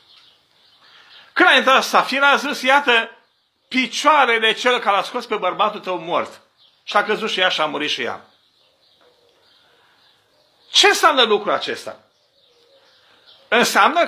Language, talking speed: Romanian, 130 wpm